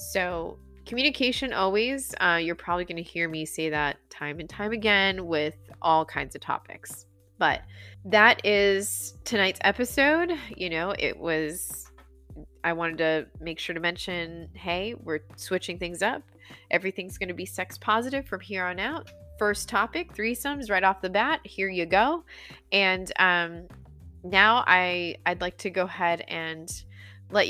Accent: American